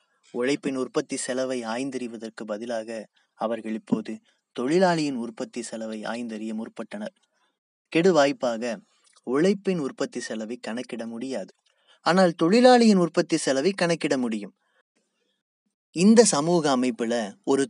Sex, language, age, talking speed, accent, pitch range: male, Tamil, 20-39, 95 wpm, native, 125-185 Hz